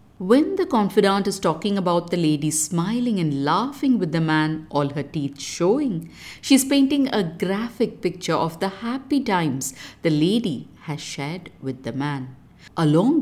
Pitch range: 150-230 Hz